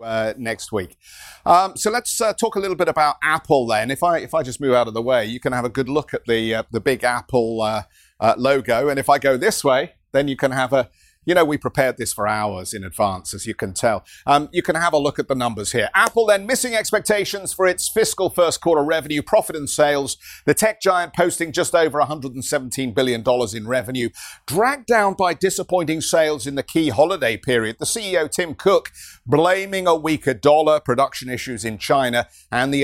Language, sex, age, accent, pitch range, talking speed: English, male, 50-69, British, 125-175 Hz, 220 wpm